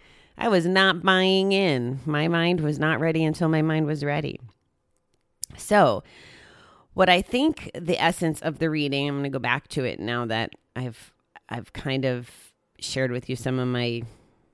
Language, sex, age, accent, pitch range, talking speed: English, female, 30-49, American, 125-155 Hz, 180 wpm